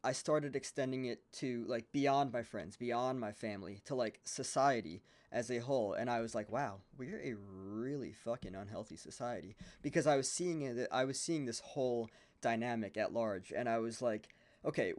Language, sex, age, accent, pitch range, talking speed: English, male, 20-39, American, 110-135 Hz, 190 wpm